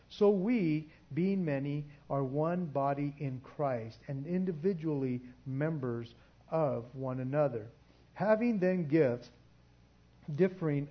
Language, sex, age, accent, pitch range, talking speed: English, male, 50-69, American, 135-175 Hz, 105 wpm